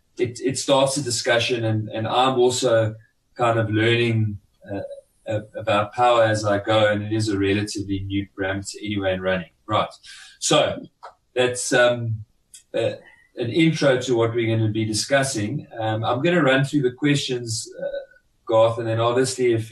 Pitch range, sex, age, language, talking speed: 105-120 Hz, male, 30-49, English, 170 wpm